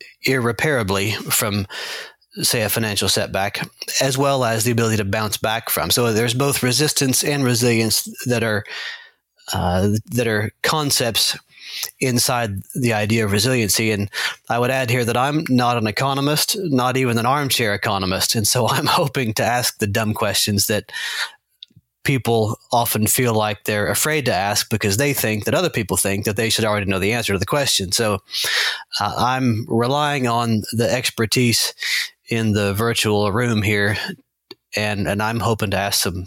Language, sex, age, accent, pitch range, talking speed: English, male, 30-49, American, 105-130 Hz, 165 wpm